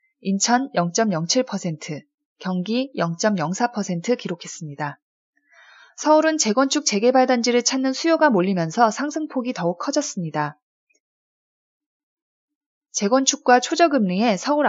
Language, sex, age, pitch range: Korean, female, 20-39, 180-270 Hz